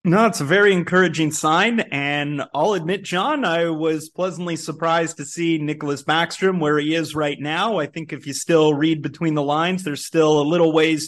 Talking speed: 200 wpm